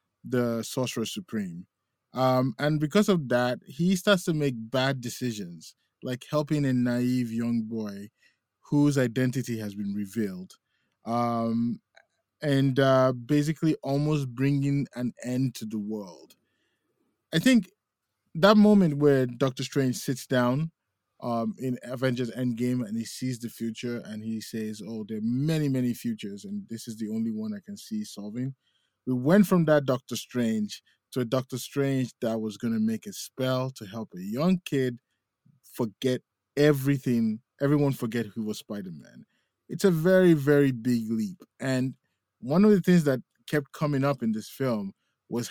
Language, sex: English, male